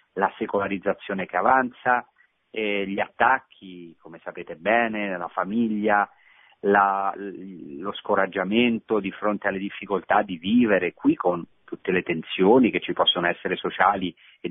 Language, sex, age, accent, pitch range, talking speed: Italian, male, 40-59, native, 95-115 Hz, 135 wpm